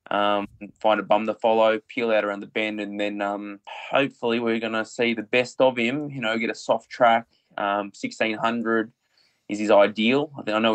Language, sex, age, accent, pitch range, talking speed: English, male, 20-39, Australian, 105-120 Hz, 205 wpm